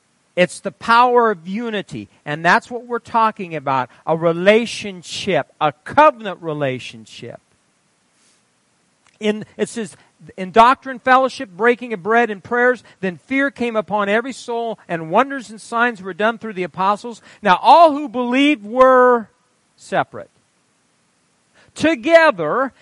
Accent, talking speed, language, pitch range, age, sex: American, 125 wpm, English, 185-250 Hz, 50-69, male